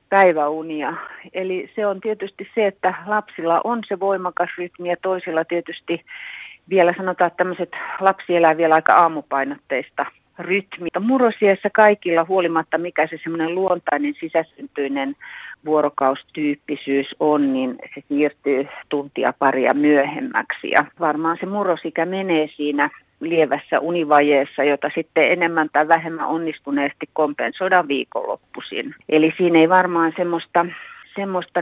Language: Finnish